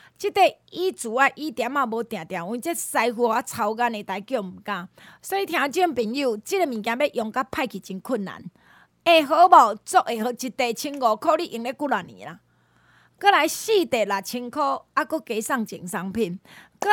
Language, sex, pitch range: Chinese, female, 225-315 Hz